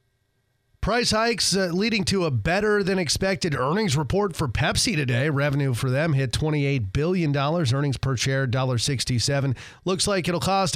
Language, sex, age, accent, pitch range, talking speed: English, male, 30-49, American, 125-170 Hz, 145 wpm